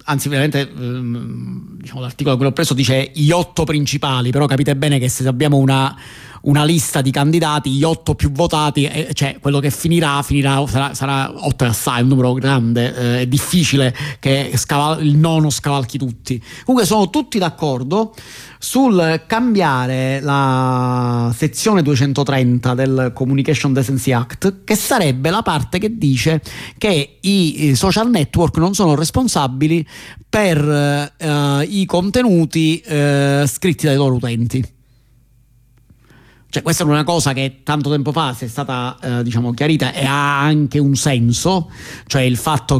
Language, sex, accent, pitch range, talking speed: Italian, male, native, 130-160 Hz, 145 wpm